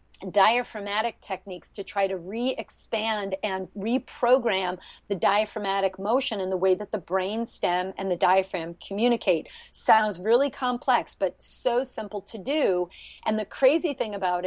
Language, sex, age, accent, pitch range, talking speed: English, female, 40-59, American, 195-240 Hz, 145 wpm